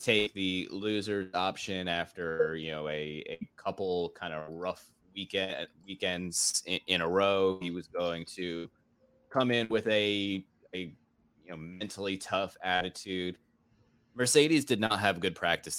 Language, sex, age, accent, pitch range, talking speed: English, male, 20-39, American, 85-105 Hz, 150 wpm